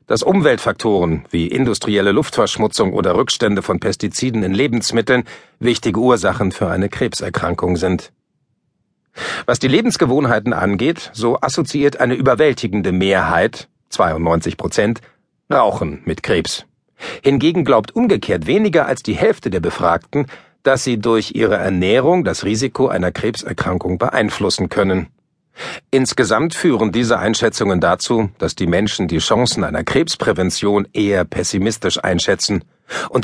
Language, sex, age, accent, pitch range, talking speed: German, male, 50-69, German, 95-125 Hz, 120 wpm